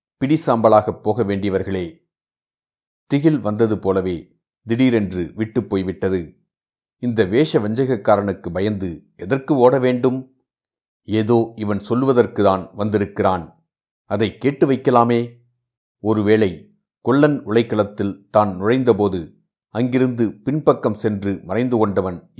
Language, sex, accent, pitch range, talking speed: Tamil, male, native, 100-125 Hz, 85 wpm